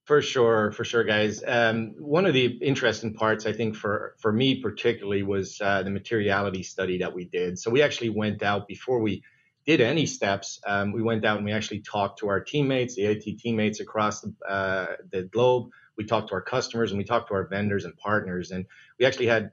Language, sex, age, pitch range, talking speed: English, male, 30-49, 100-115 Hz, 215 wpm